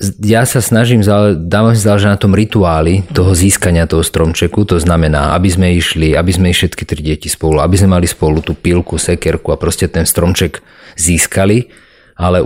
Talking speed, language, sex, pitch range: 190 wpm, Slovak, male, 80-100 Hz